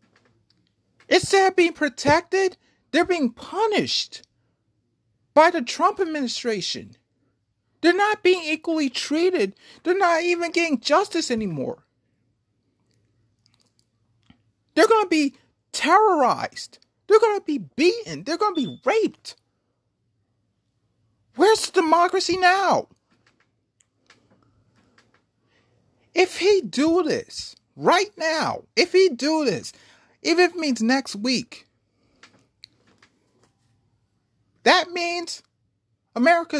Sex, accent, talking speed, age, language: male, American, 95 wpm, 40-59, English